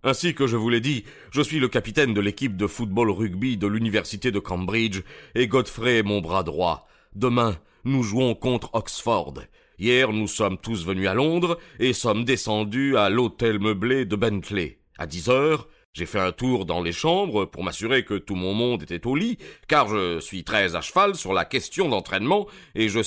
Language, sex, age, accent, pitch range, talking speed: French, male, 40-59, French, 95-125 Hz, 195 wpm